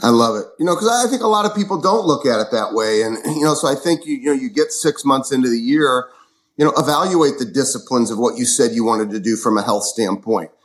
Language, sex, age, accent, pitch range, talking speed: English, male, 30-49, American, 115-155 Hz, 285 wpm